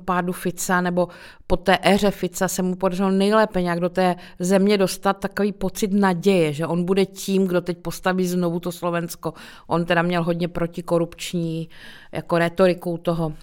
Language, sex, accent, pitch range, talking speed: Czech, female, native, 170-195 Hz, 165 wpm